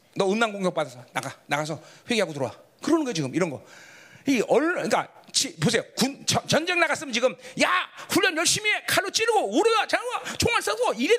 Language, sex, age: Korean, male, 40-59